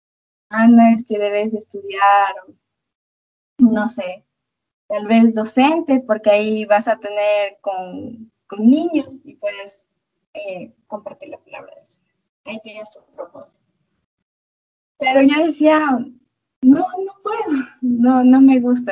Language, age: Italian, 20-39